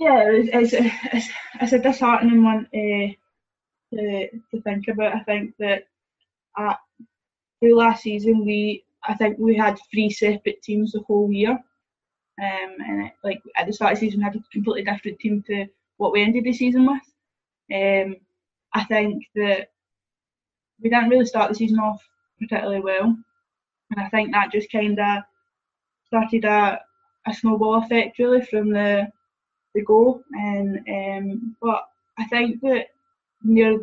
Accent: British